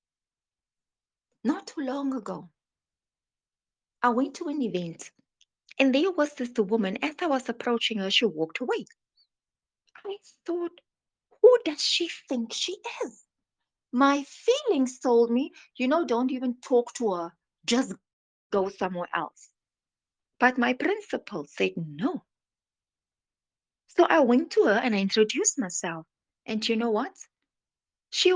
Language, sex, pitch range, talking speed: English, female, 210-300 Hz, 135 wpm